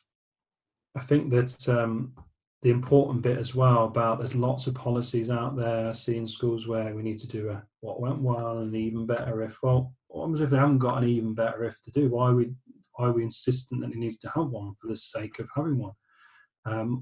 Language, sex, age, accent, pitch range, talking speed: English, male, 30-49, British, 110-125 Hz, 220 wpm